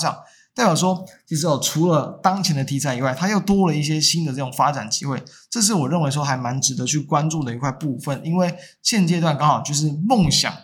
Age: 20-39